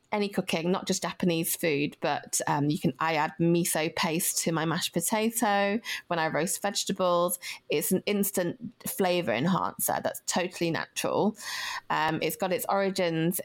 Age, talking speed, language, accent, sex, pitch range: 30-49, 155 wpm, English, British, female, 165-195 Hz